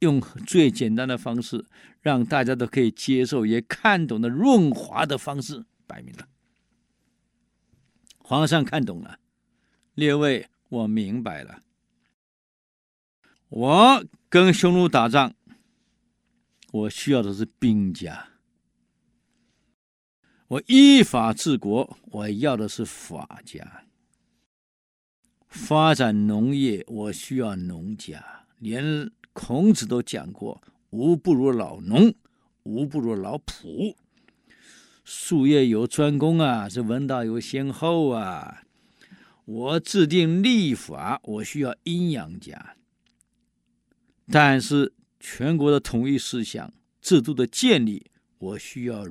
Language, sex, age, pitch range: Chinese, male, 50-69, 110-160 Hz